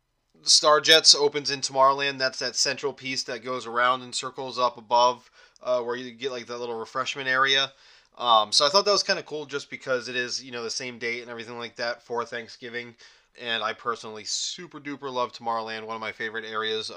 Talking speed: 215 wpm